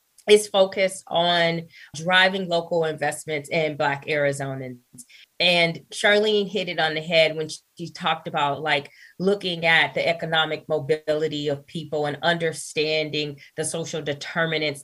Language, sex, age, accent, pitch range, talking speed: English, female, 20-39, American, 155-185 Hz, 140 wpm